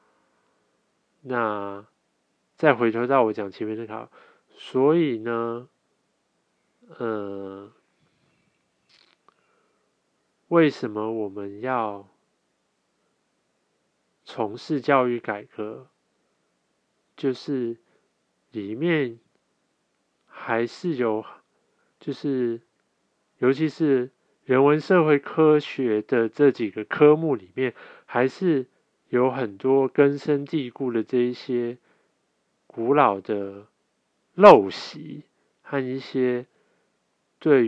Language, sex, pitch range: Chinese, male, 110-140 Hz